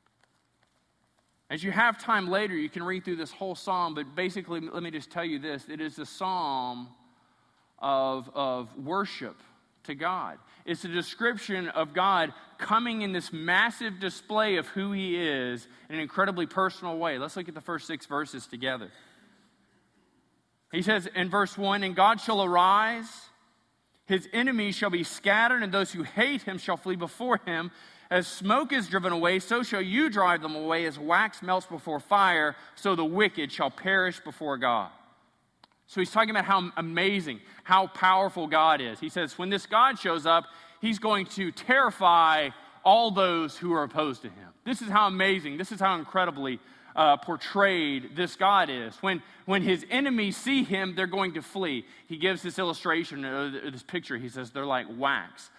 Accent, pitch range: American, 155-195 Hz